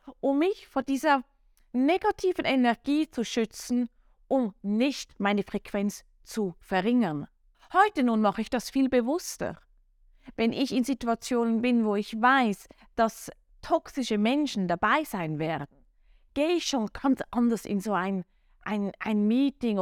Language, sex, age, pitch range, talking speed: German, female, 20-39, 190-260 Hz, 140 wpm